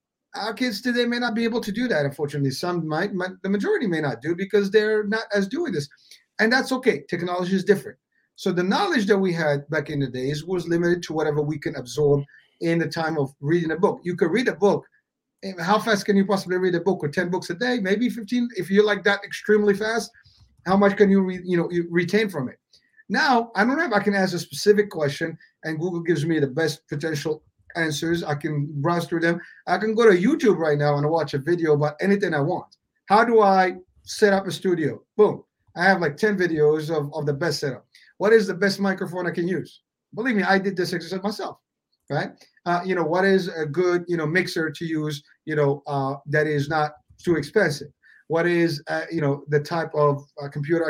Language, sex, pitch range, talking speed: English, male, 155-200 Hz, 230 wpm